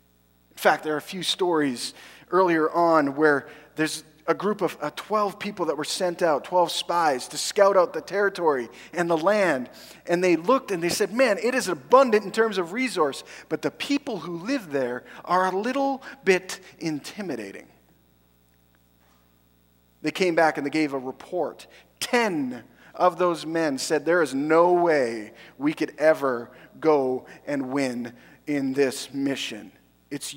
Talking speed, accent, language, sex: 160 wpm, American, English, male